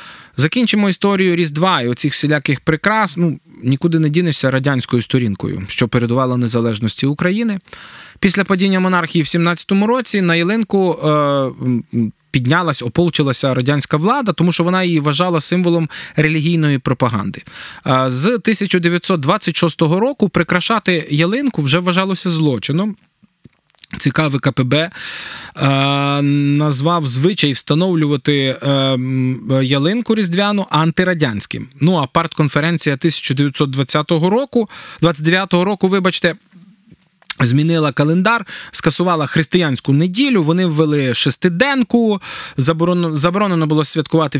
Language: Ukrainian